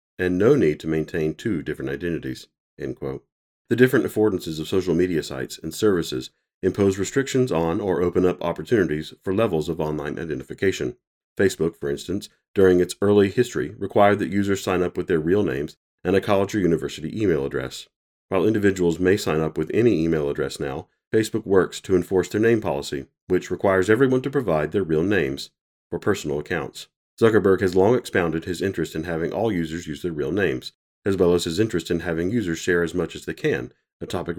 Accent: American